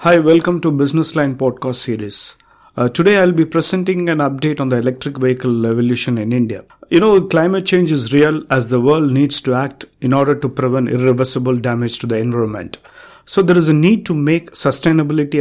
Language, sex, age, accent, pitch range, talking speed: English, male, 50-69, Indian, 125-155 Hz, 200 wpm